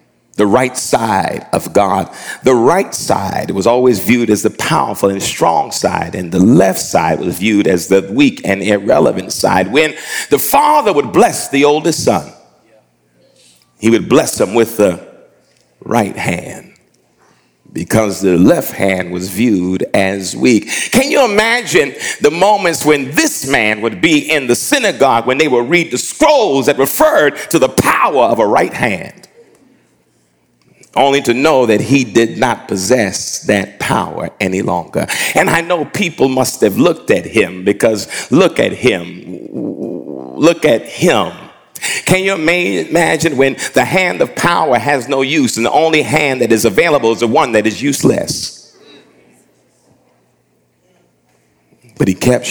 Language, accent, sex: English, American, male